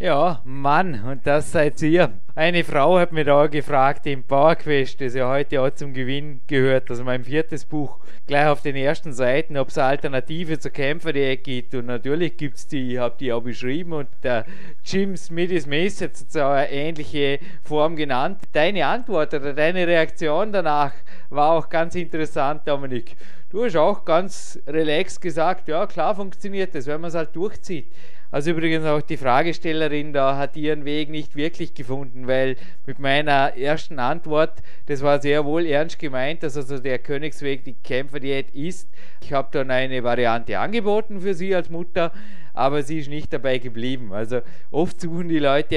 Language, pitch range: German, 140-170 Hz